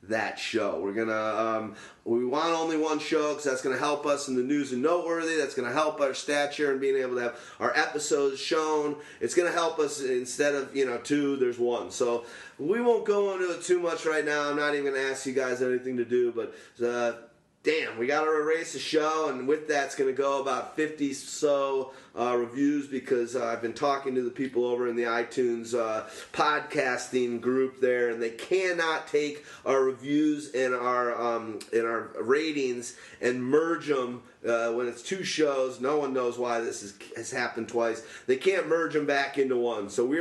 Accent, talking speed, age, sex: American, 205 wpm, 30-49, male